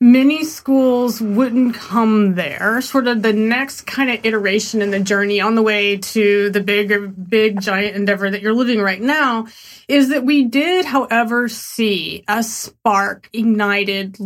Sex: female